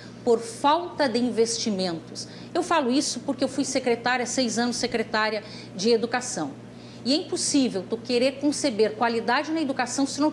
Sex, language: female, Portuguese